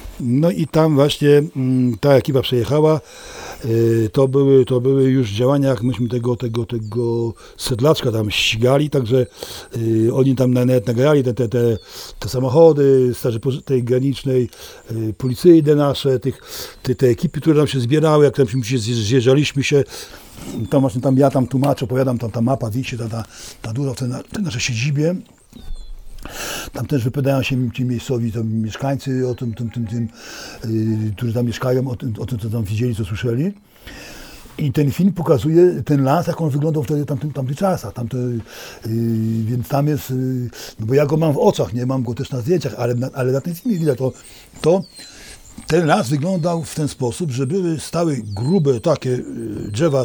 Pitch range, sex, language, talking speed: 120-145 Hz, male, Polish, 175 wpm